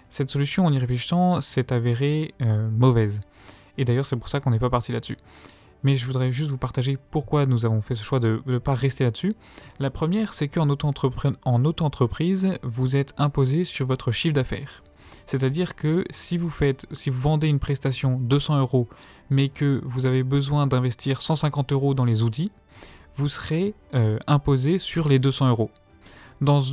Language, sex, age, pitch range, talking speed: French, male, 20-39, 120-145 Hz, 180 wpm